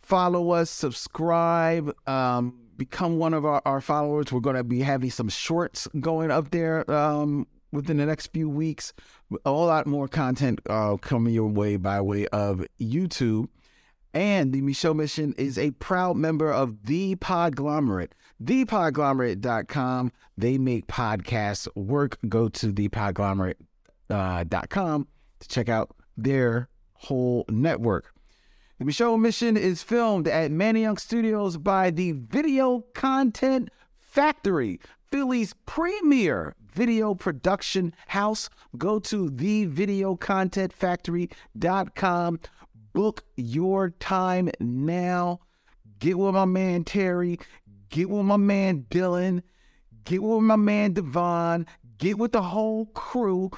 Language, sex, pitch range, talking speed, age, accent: English, male, 130-195 Hz, 125 wpm, 40-59, American